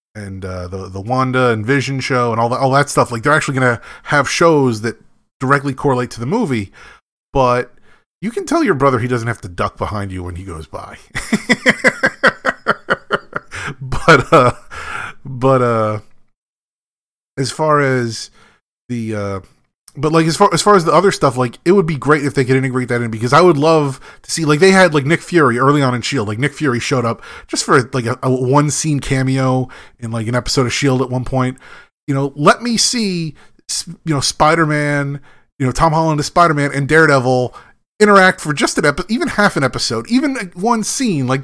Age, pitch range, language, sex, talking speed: 30-49, 125-170 Hz, English, male, 200 wpm